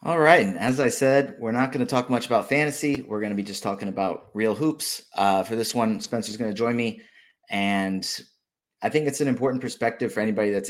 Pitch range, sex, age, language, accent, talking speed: 100-115 Hz, male, 30-49, English, American, 230 wpm